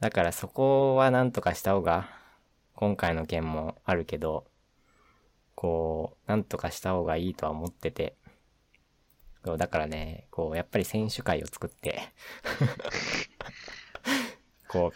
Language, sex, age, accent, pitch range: Japanese, male, 20-39, native, 80-115 Hz